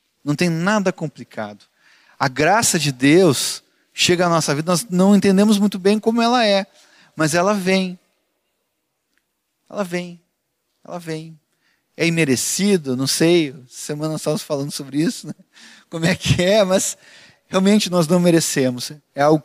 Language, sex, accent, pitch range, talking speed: Portuguese, male, Brazilian, 145-190 Hz, 150 wpm